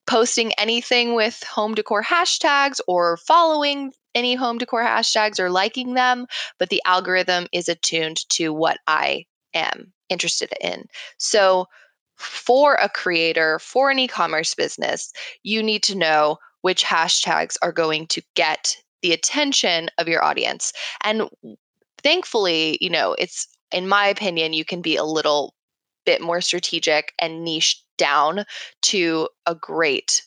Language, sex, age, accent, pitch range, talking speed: English, female, 20-39, American, 165-230 Hz, 140 wpm